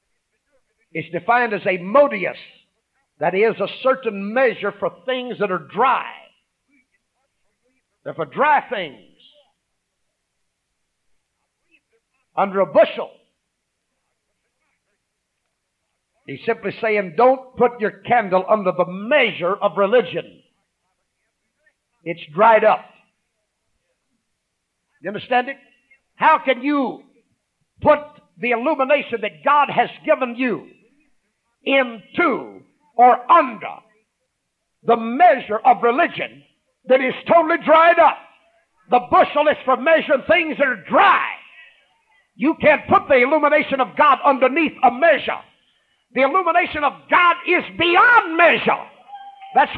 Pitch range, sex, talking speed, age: 235-335 Hz, male, 110 wpm, 50-69